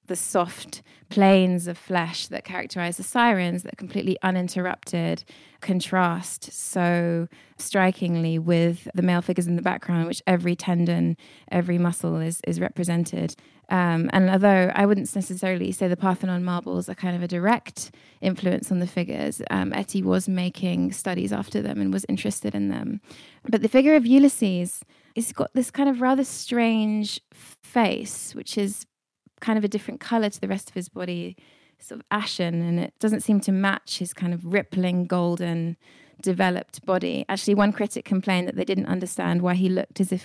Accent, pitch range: British, 170-200 Hz